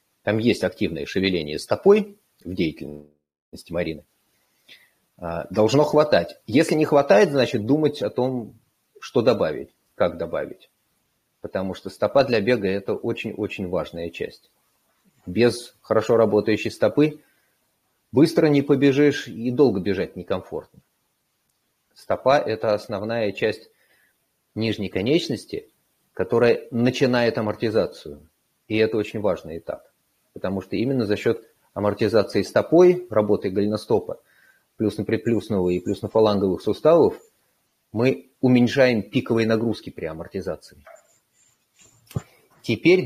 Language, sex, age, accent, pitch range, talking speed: Russian, male, 30-49, native, 105-140 Hz, 110 wpm